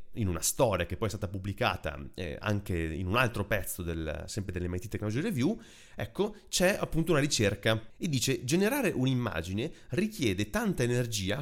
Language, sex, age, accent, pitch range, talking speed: Italian, male, 30-49, native, 100-140 Hz, 165 wpm